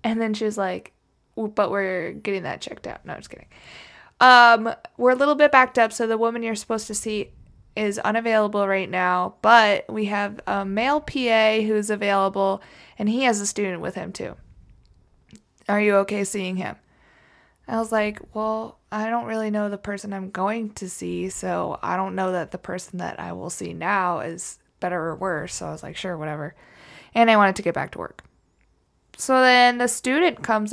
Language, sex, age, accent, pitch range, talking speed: English, female, 20-39, American, 190-225 Hz, 200 wpm